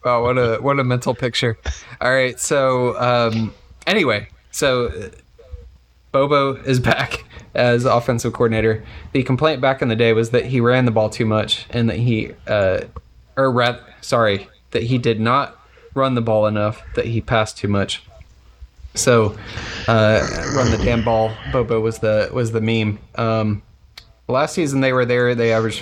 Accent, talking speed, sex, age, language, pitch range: American, 170 wpm, male, 20-39, English, 110-125 Hz